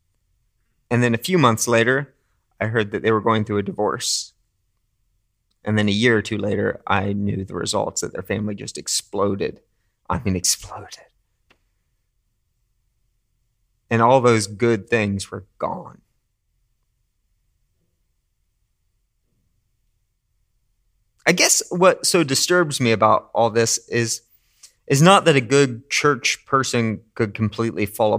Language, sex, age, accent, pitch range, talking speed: English, male, 30-49, American, 105-130 Hz, 130 wpm